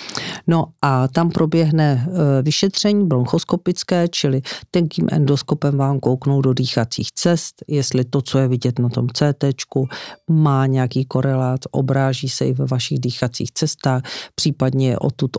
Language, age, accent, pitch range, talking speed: Czech, 40-59, native, 130-145 Hz, 135 wpm